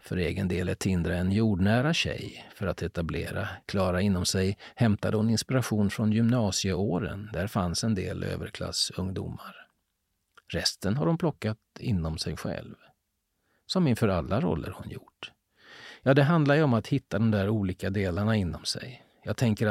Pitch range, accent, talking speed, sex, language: 95-115 Hz, native, 160 wpm, male, Swedish